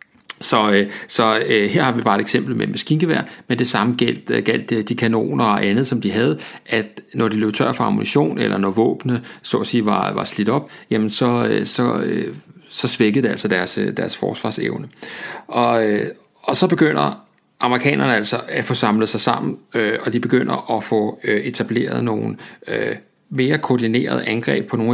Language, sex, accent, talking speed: Danish, male, native, 170 wpm